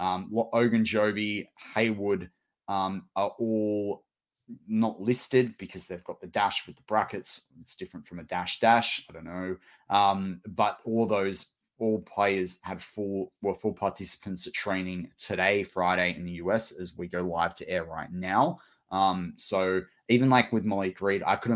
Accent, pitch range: Australian, 95-115 Hz